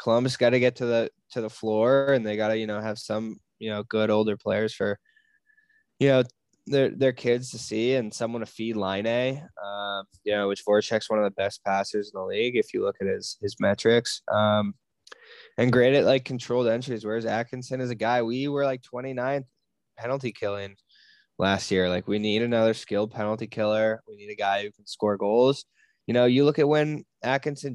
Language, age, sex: English, 10-29, male